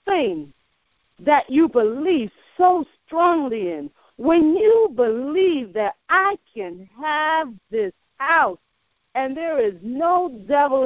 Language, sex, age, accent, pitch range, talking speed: English, female, 50-69, American, 235-350 Hz, 115 wpm